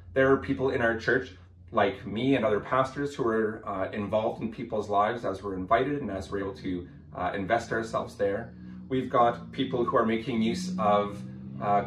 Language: English